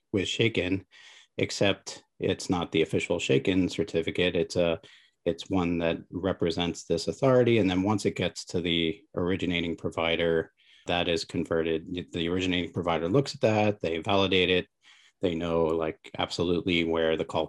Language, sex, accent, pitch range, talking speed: English, male, American, 85-100 Hz, 155 wpm